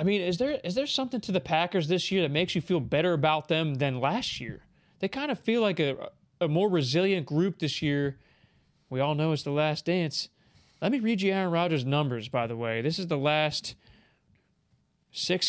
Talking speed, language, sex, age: 215 wpm, English, male, 20-39